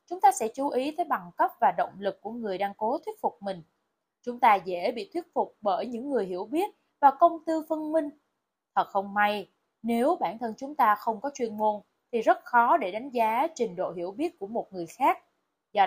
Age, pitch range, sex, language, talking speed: 20-39, 200-290 Hz, female, Vietnamese, 230 wpm